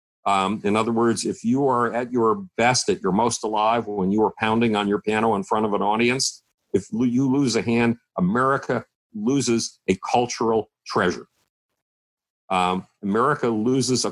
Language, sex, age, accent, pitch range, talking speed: English, male, 50-69, American, 105-130 Hz, 175 wpm